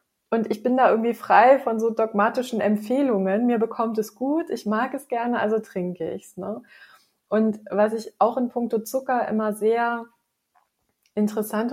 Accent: German